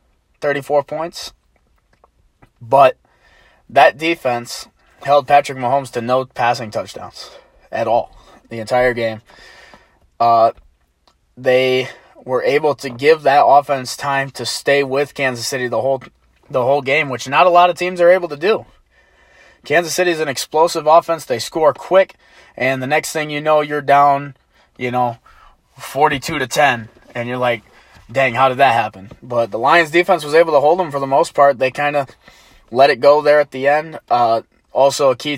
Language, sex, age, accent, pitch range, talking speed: English, male, 20-39, American, 120-160 Hz, 175 wpm